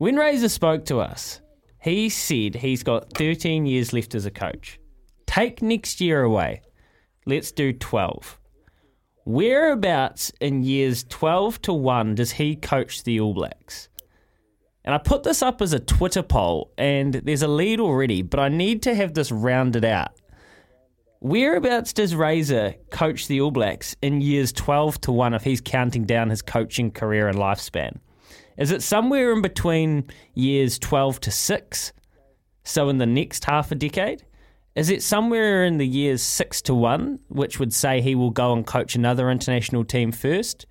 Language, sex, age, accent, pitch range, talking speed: English, male, 20-39, Australian, 120-165 Hz, 170 wpm